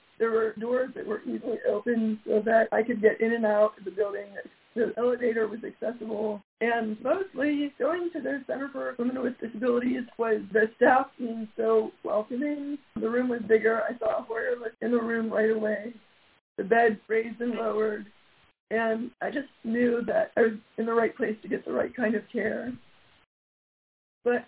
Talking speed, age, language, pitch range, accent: 185 wpm, 40-59, English, 220-260 Hz, American